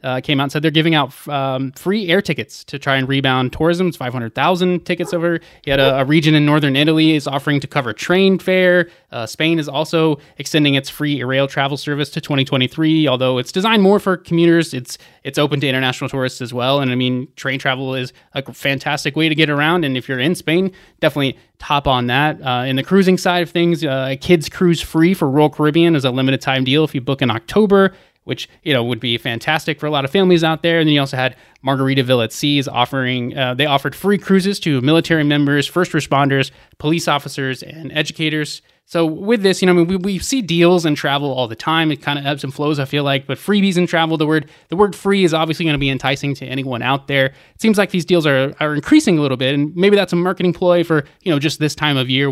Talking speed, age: 240 wpm, 20-39